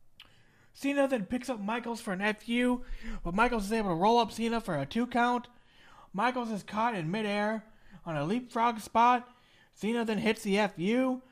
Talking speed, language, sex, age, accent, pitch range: 175 wpm, English, male, 30-49, American, 175-235 Hz